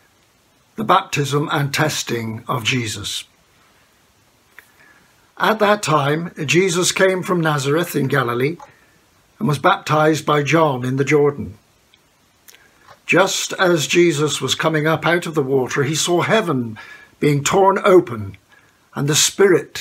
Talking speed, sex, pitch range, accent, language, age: 125 wpm, male, 130-170 Hz, British, English, 60-79